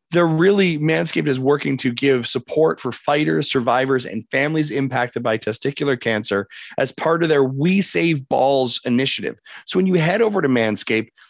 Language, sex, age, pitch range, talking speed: English, male, 30-49, 125-155 Hz, 170 wpm